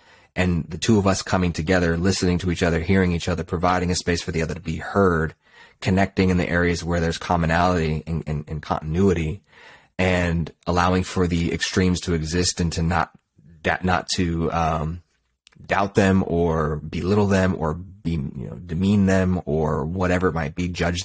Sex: male